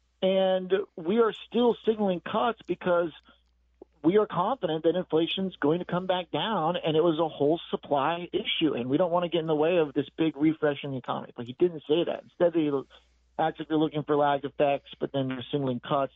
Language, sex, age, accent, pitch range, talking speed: English, male, 40-59, American, 125-165 Hz, 225 wpm